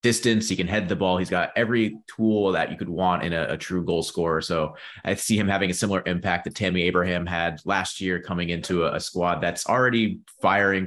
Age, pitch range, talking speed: 30-49, 85-95 Hz, 230 wpm